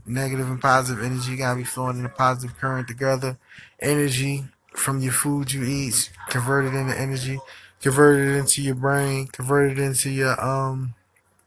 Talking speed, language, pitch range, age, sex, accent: 155 wpm, English, 125-135 Hz, 20-39, male, American